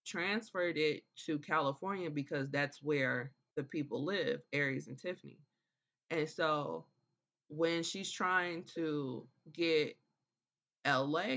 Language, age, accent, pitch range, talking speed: English, 20-39, American, 140-170 Hz, 110 wpm